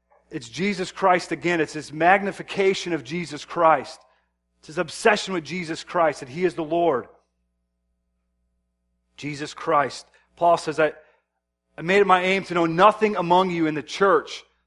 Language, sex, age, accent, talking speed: English, male, 30-49, American, 160 wpm